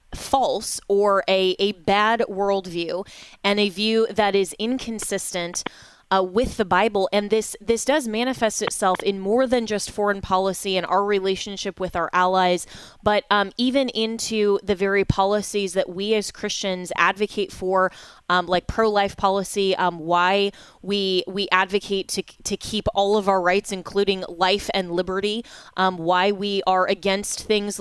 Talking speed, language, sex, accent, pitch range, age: 160 wpm, English, female, American, 185-215 Hz, 20-39